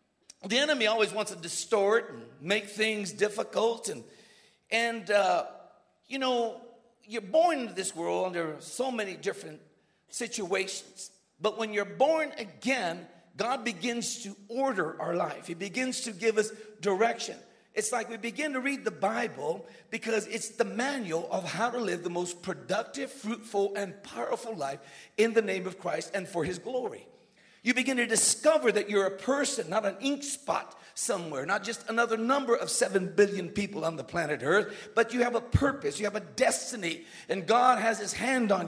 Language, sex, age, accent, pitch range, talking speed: English, male, 50-69, American, 195-240 Hz, 180 wpm